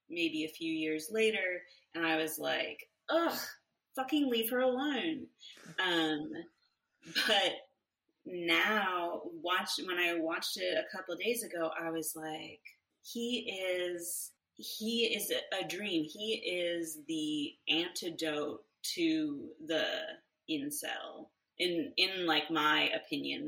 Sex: female